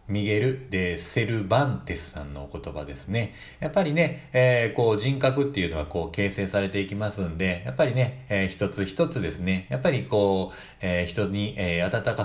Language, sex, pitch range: Japanese, male, 90-115 Hz